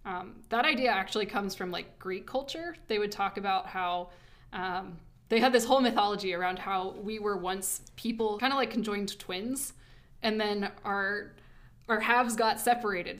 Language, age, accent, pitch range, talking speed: English, 20-39, American, 190-230 Hz, 175 wpm